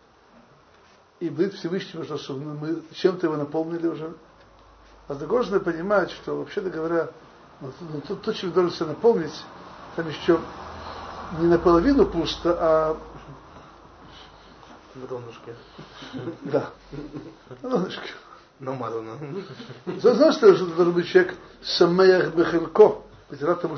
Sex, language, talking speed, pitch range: male, Russian, 95 wpm, 145-180 Hz